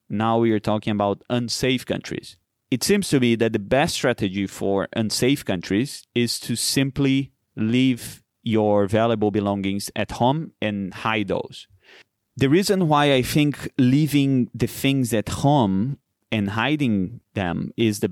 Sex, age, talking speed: male, 30-49, 150 wpm